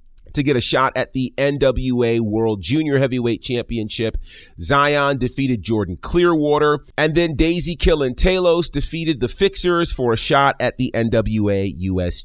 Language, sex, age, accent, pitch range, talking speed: English, male, 30-49, American, 105-145 Hz, 140 wpm